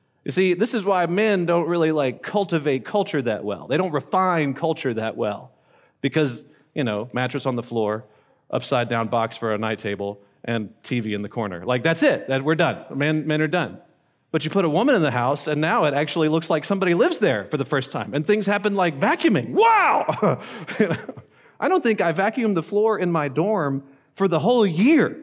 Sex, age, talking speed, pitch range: male, 30-49, 215 wpm, 125-195 Hz